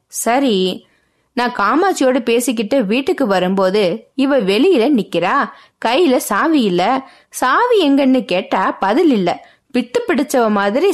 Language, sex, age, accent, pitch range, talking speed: Tamil, female, 20-39, native, 210-285 Hz, 105 wpm